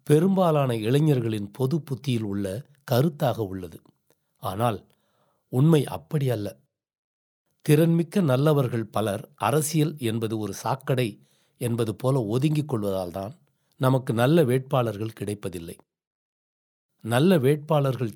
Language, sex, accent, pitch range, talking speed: Tamil, male, native, 115-150 Hz, 95 wpm